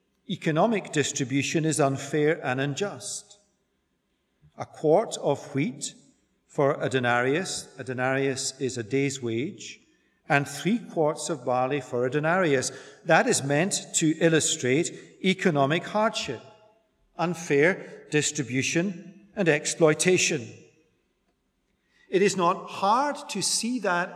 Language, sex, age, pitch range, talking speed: English, male, 50-69, 135-190 Hz, 110 wpm